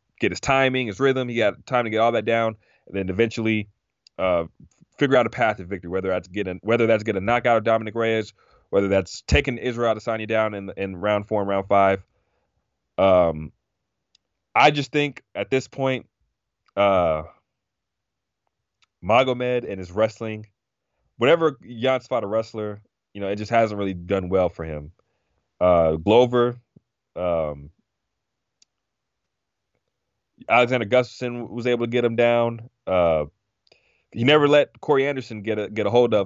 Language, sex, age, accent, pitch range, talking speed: English, male, 30-49, American, 95-120 Hz, 165 wpm